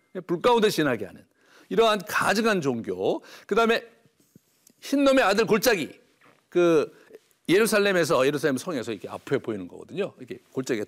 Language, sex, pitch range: Korean, male, 200-270 Hz